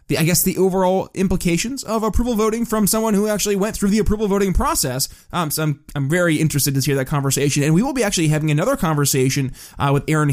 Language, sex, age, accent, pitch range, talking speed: English, male, 20-39, American, 140-185 Hz, 225 wpm